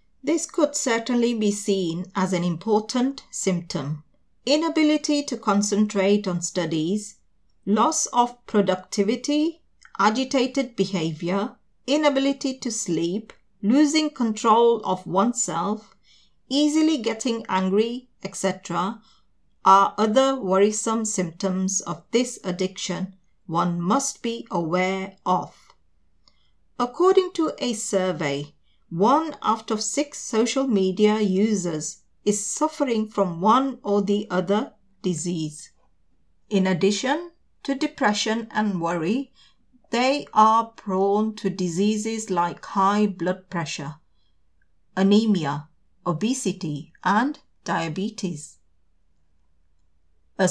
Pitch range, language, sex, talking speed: 185-245 Hz, English, female, 95 wpm